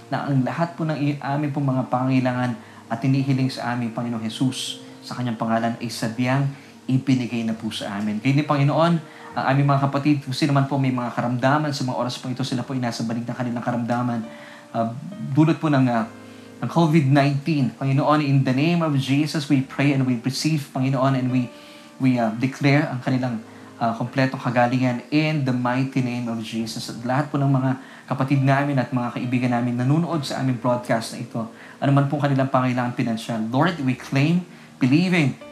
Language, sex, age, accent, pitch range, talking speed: Filipino, male, 20-39, native, 120-140 Hz, 185 wpm